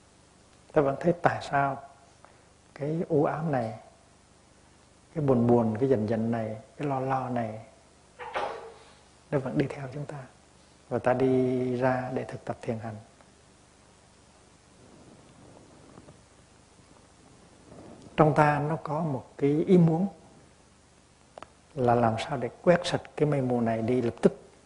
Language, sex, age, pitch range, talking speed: Vietnamese, male, 60-79, 115-145 Hz, 135 wpm